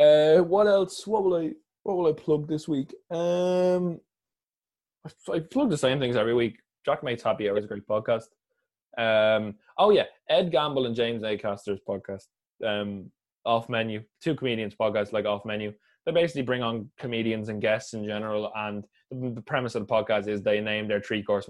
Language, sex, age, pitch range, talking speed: English, male, 20-39, 105-130 Hz, 185 wpm